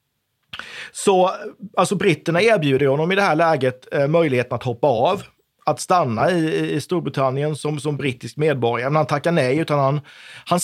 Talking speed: 170 wpm